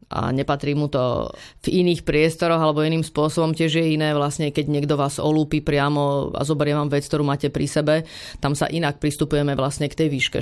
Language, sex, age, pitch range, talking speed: Slovak, female, 30-49, 150-160 Hz, 200 wpm